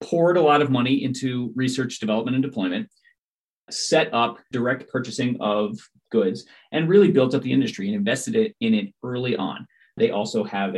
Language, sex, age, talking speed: English, male, 30-49, 180 wpm